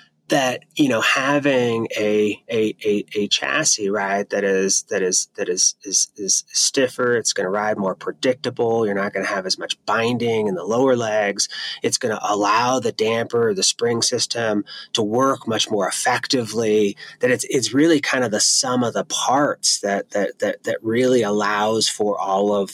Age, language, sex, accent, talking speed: 30-49, English, male, American, 180 wpm